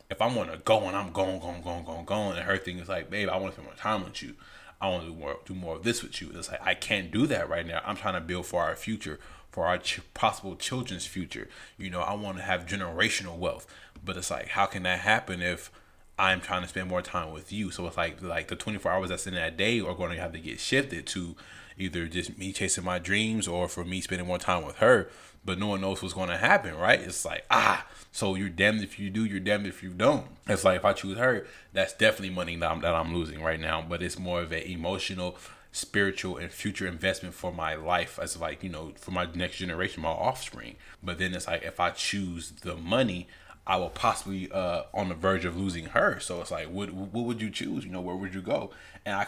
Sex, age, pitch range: male, 20-39, 90-100 Hz